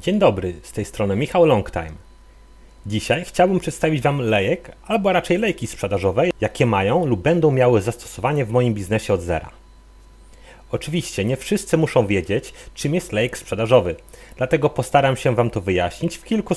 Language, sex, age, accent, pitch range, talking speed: Polish, male, 40-59, native, 105-160 Hz, 160 wpm